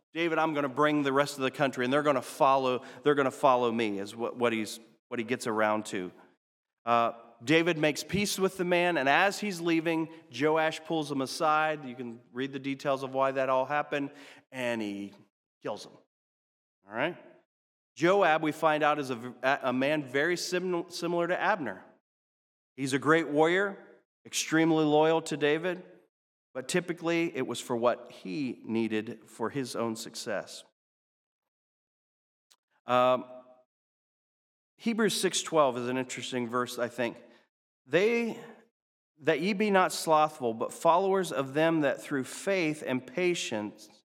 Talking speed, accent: 160 wpm, American